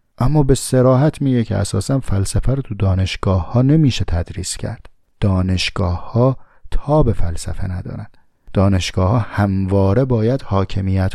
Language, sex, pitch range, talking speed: Persian, male, 95-125 Hz, 135 wpm